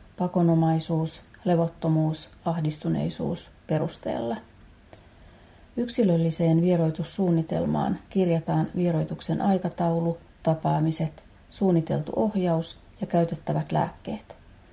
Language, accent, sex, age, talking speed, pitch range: Finnish, native, female, 30-49, 60 wpm, 160-185 Hz